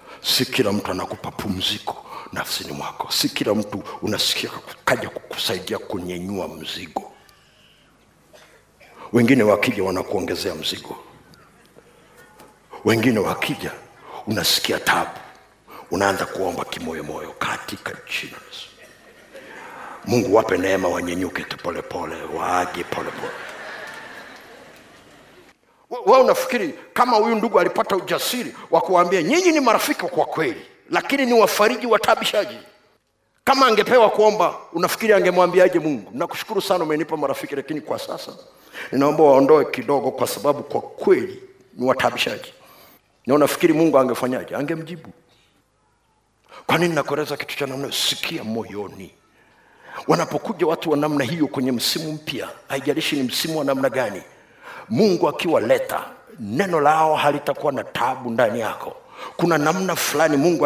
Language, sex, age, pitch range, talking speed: Swahili, male, 60-79, 140-215 Hz, 115 wpm